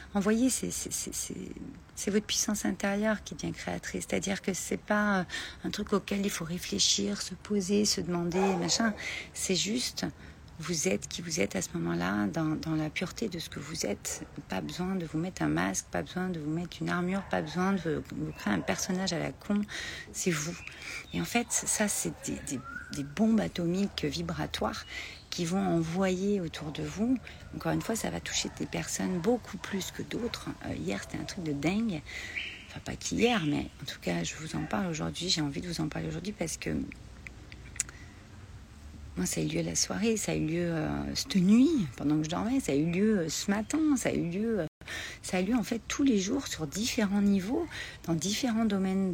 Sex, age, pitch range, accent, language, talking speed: female, 40-59, 160-210 Hz, French, French, 215 wpm